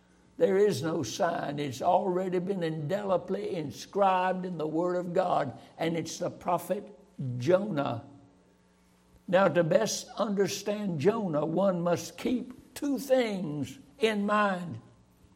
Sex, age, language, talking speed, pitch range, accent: male, 60-79, English, 120 wpm, 160-215 Hz, American